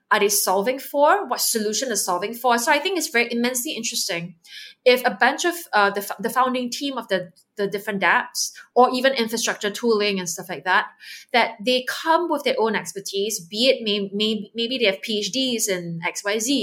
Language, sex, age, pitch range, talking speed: English, female, 20-39, 200-265 Hz, 200 wpm